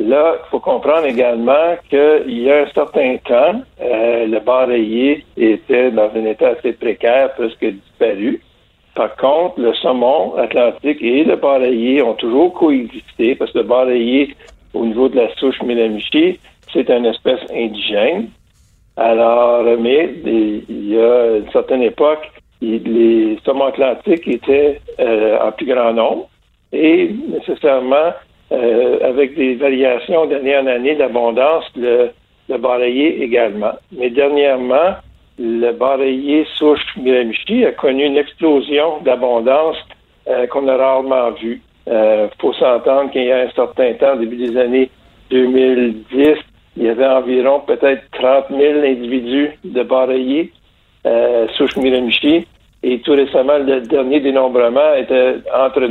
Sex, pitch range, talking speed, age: male, 120-145 Hz, 135 wpm, 60-79